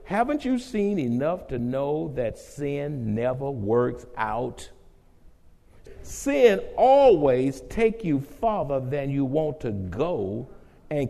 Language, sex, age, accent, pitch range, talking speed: English, male, 60-79, American, 130-215 Hz, 120 wpm